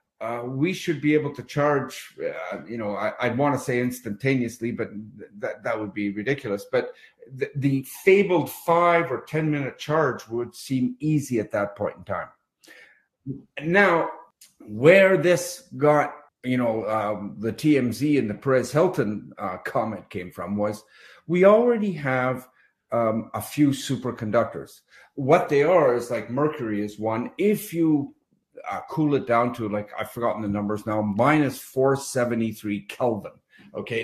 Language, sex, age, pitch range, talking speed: English, male, 50-69, 115-145 Hz, 150 wpm